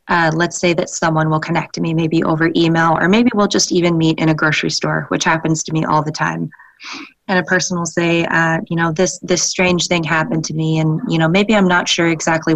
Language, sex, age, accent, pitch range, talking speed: English, female, 20-39, American, 155-165 Hz, 250 wpm